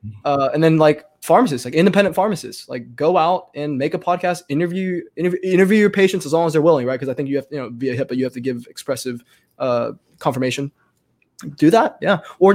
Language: English